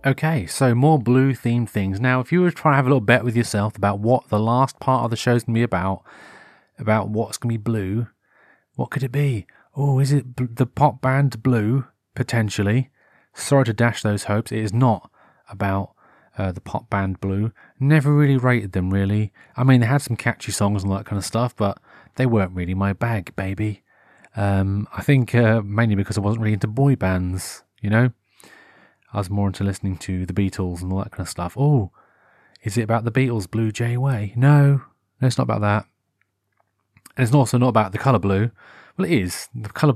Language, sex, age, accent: English, male, 30-49, British